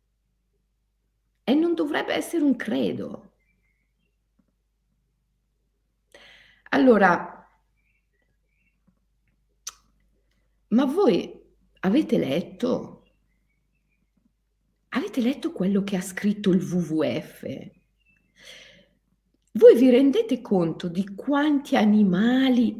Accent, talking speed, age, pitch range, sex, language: native, 70 wpm, 50-69, 190-275 Hz, female, Italian